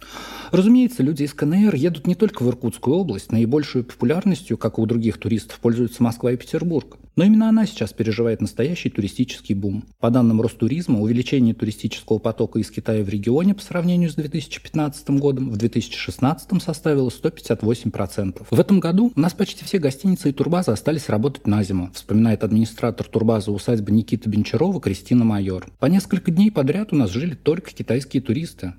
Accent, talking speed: native, 165 wpm